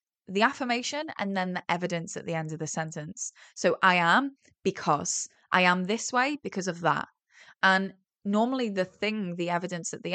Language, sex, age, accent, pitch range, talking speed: English, female, 10-29, British, 175-240 Hz, 185 wpm